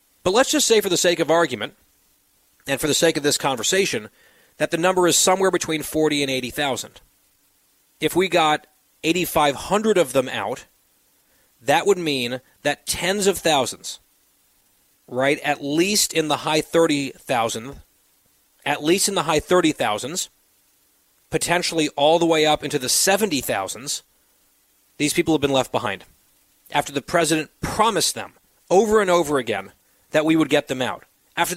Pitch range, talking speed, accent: 145-175 Hz, 155 wpm, American